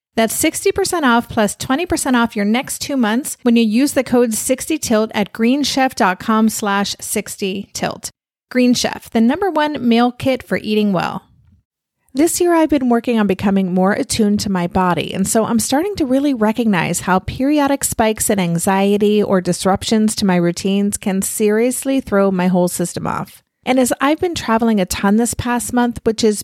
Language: English